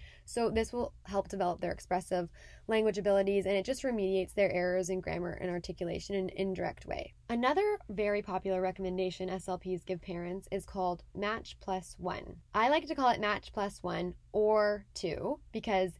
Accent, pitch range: American, 180-220 Hz